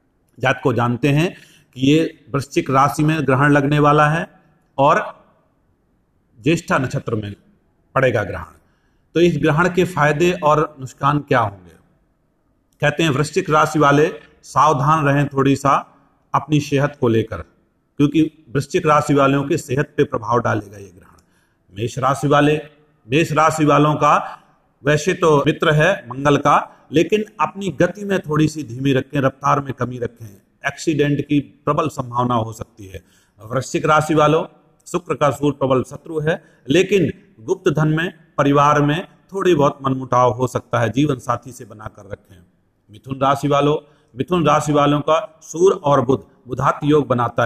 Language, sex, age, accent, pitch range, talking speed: Hindi, male, 40-59, native, 125-155 Hz, 155 wpm